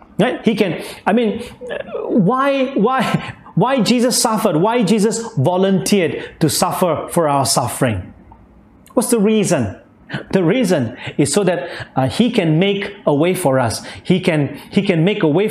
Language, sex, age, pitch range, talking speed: English, male, 40-59, 150-210 Hz, 160 wpm